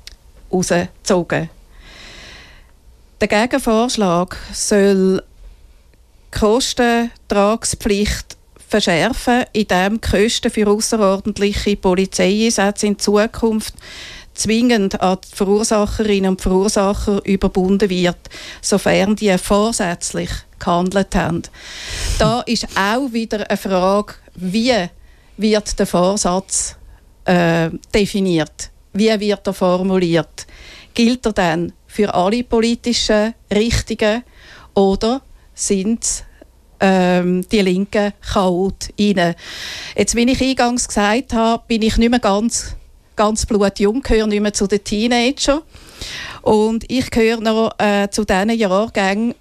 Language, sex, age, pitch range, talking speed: English, female, 50-69, 190-220 Hz, 100 wpm